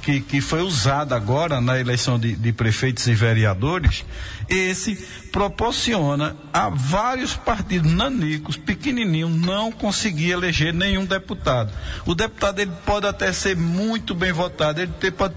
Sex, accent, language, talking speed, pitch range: male, Brazilian, Portuguese, 135 wpm, 135-195 Hz